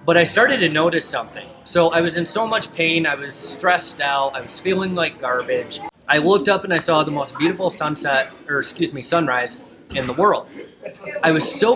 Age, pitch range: 20-39, 145-175 Hz